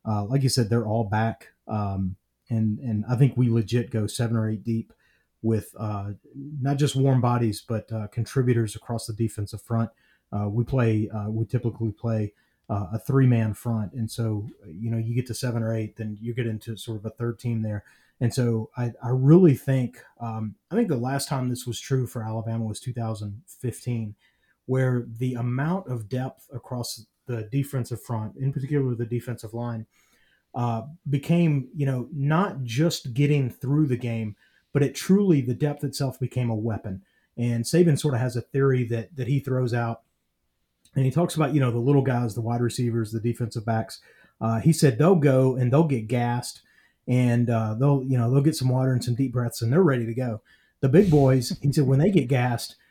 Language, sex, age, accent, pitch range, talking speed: English, male, 30-49, American, 115-135 Hz, 205 wpm